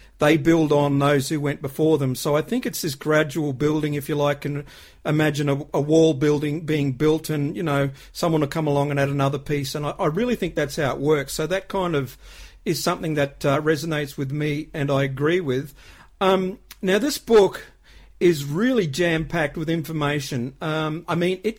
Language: English